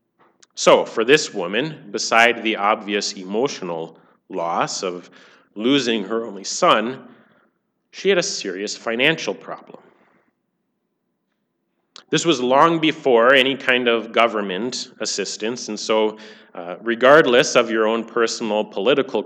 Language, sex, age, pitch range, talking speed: English, male, 30-49, 110-150 Hz, 120 wpm